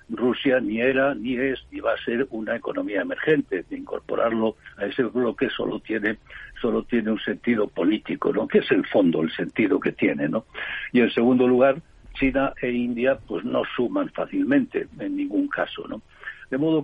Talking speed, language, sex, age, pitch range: 180 wpm, Spanish, male, 60-79, 115-145 Hz